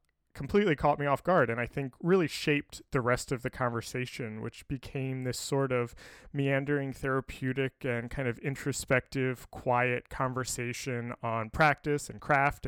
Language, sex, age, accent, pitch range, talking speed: English, male, 30-49, American, 120-145 Hz, 150 wpm